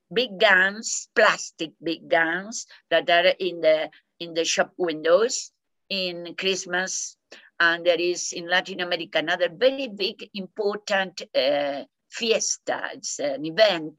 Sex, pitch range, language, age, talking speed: female, 170-230 Hz, Hindi, 50-69, 130 wpm